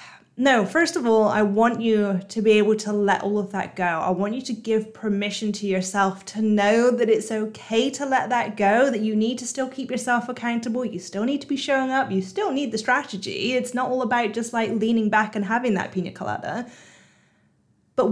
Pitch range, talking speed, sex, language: 205-245 Hz, 220 wpm, female, English